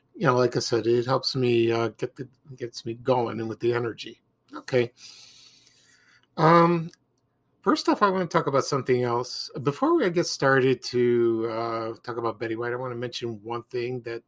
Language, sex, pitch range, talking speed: English, male, 125-160 Hz, 195 wpm